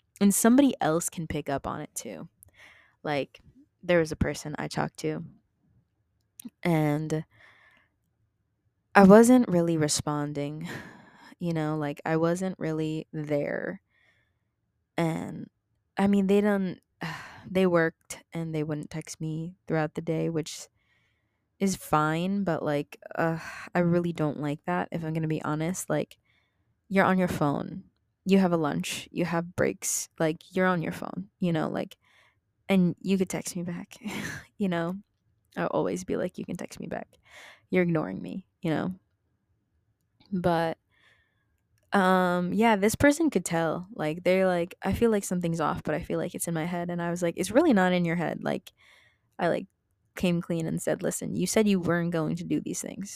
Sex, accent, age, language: female, American, 20-39, English